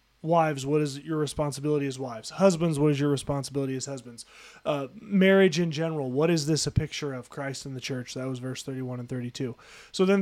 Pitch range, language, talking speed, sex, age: 135-190 Hz, English, 210 wpm, male, 30-49